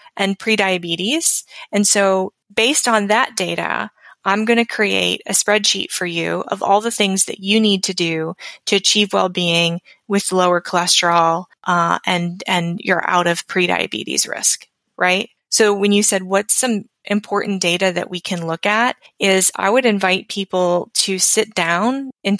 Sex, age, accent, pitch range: female, 20-39, American, 185-225 Hz